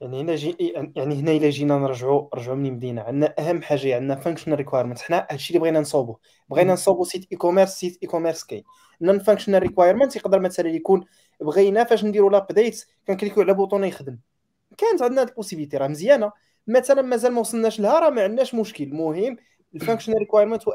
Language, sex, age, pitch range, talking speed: Arabic, male, 20-39, 160-220 Hz, 180 wpm